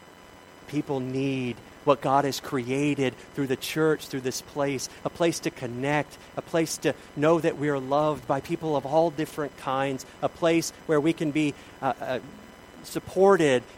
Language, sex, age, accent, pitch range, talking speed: English, male, 40-59, American, 100-155 Hz, 170 wpm